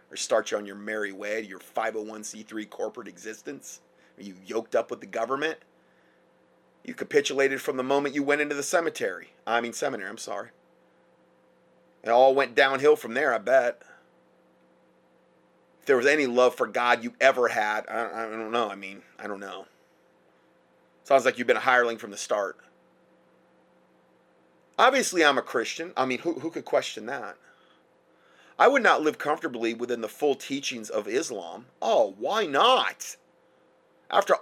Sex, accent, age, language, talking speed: male, American, 30-49, English, 165 wpm